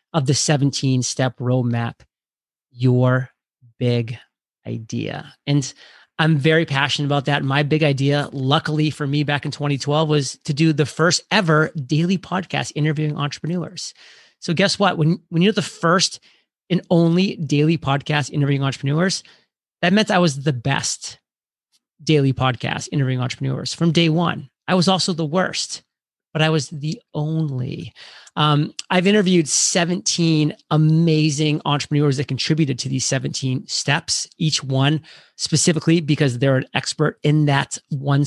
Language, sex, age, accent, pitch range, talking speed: English, male, 30-49, American, 135-160 Hz, 145 wpm